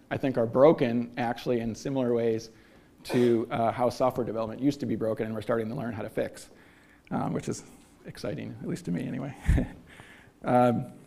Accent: American